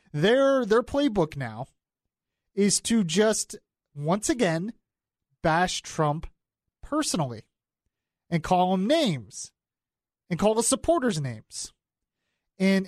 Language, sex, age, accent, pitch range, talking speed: English, male, 30-49, American, 155-230 Hz, 100 wpm